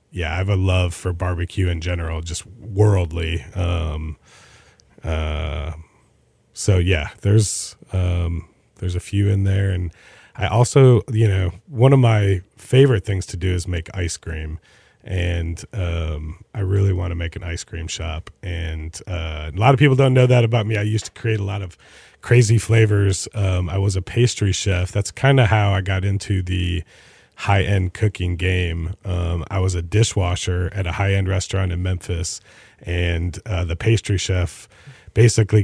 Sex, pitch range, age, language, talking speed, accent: male, 90-110 Hz, 30-49, English, 175 wpm, American